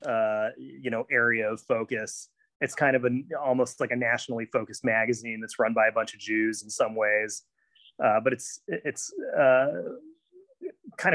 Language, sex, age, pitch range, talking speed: English, male, 30-49, 105-130 Hz, 170 wpm